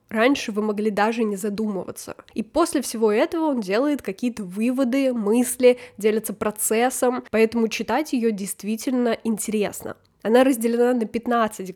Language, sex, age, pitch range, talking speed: Russian, female, 10-29, 210-250 Hz, 135 wpm